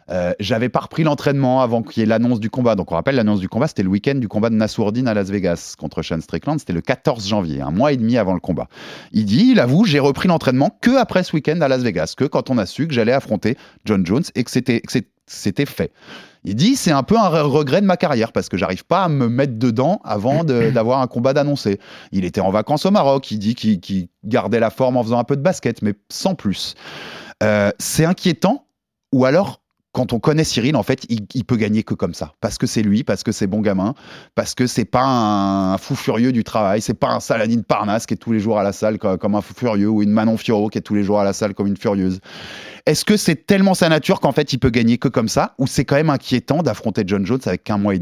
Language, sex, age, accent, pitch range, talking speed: French, male, 30-49, French, 105-140 Hz, 260 wpm